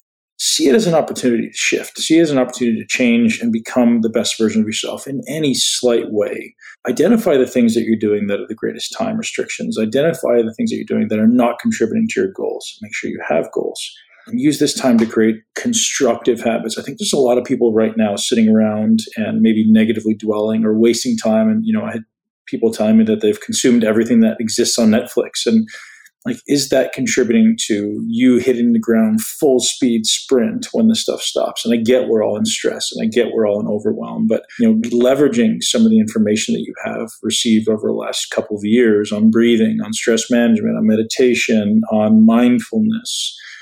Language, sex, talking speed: English, male, 215 wpm